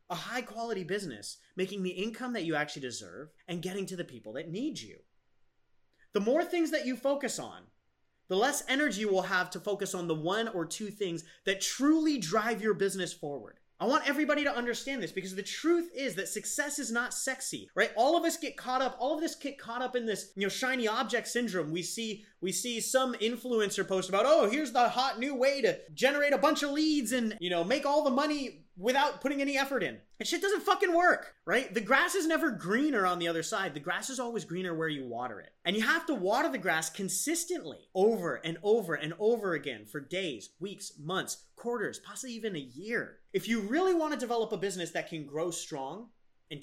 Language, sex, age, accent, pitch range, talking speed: English, male, 30-49, American, 180-270 Hz, 225 wpm